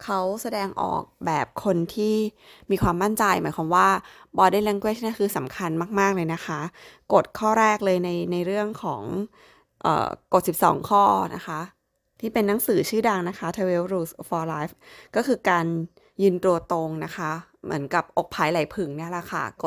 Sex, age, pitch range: female, 20-39, 170-210 Hz